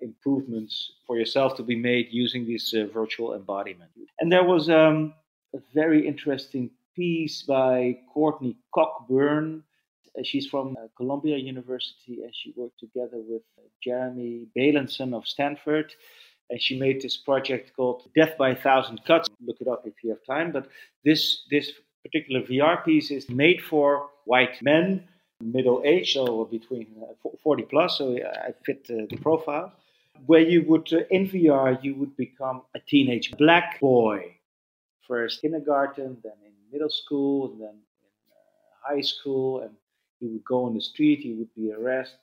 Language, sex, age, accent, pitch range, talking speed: English, male, 40-59, Dutch, 120-155 Hz, 160 wpm